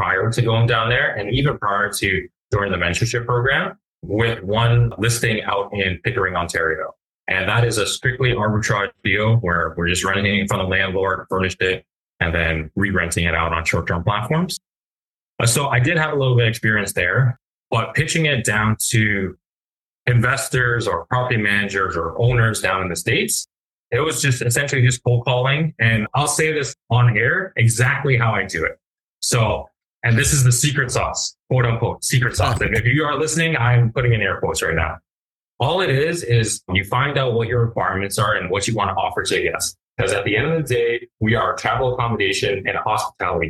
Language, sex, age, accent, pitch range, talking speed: English, male, 30-49, American, 100-125 Hz, 205 wpm